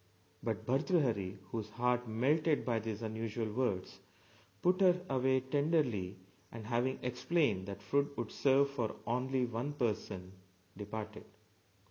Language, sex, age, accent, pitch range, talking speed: English, male, 40-59, Indian, 100-135 Hz, 125 wpm